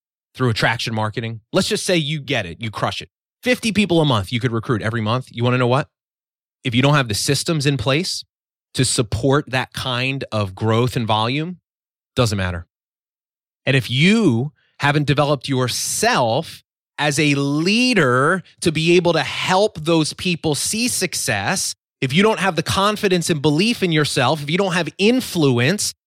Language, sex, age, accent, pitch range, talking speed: English, male, 30-49, American, 135-195 Hz, 175 wpm